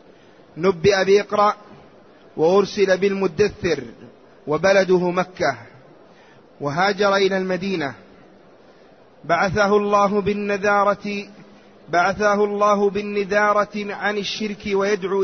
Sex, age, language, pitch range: male, 30-49, Arabic, 185-210 Hz